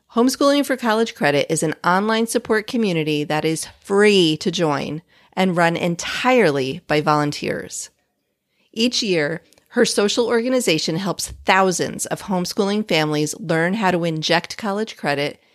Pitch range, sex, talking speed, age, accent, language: 165-220 Hz, female, 135 wpm, 30-49, American, English